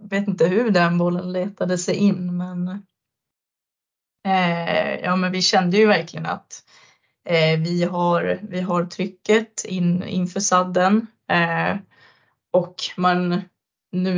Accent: native